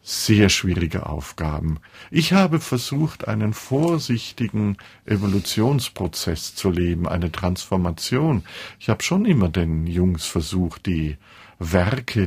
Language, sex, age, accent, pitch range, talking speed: German, male, 50-69, German, 90-110 Hz, 110 wpm